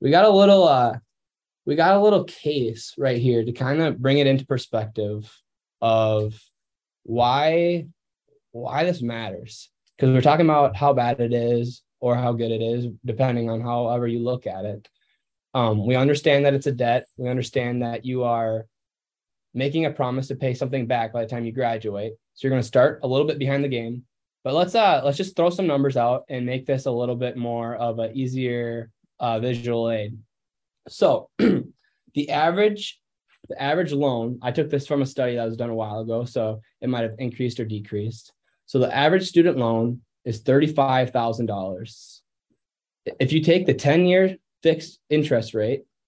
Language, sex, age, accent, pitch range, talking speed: English, male, 10-29, American, 115-140 Hz, 185 wpm